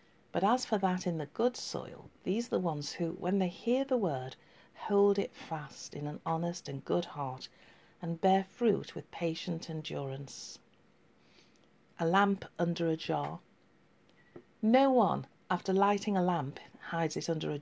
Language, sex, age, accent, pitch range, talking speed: English, female, 50-69, British, 165-205 Hz, 165 wpm